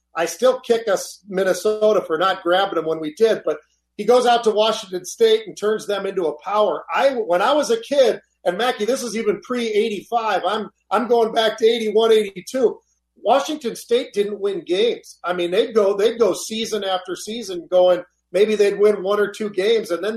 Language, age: English, 40-59